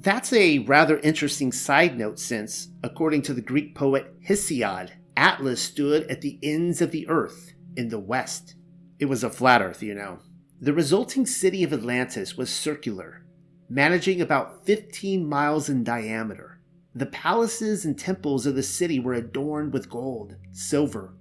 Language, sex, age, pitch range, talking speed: English, male, 30-49, 115-155 Hz, 160 wpm